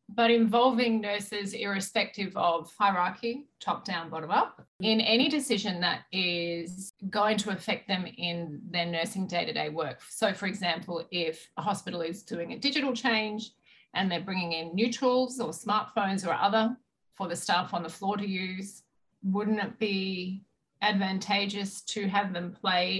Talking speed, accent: 160 wpm, Australian